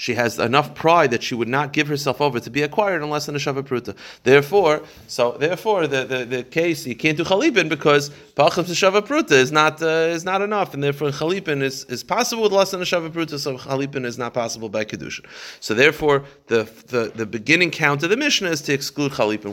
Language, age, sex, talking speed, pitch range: English, 30-49, male, 215 wpm, 115-155 Hz